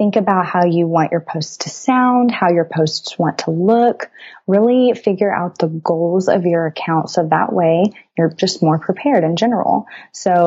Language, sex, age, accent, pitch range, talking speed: English, female, 20-39, American, 170-200 Hz, 190 wpm